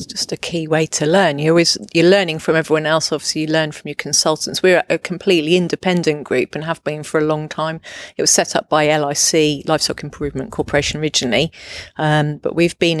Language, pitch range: English, 150-170 Hz